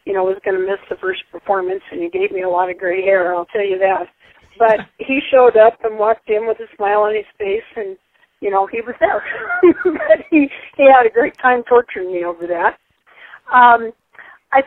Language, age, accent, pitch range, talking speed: English, 40-59, American, 190-255 Hz, 220 wpm